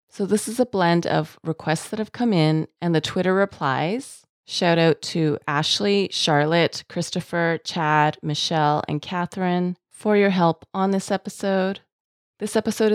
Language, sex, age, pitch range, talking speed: English, female, 30-49, 155-200 Hz, 155 wpm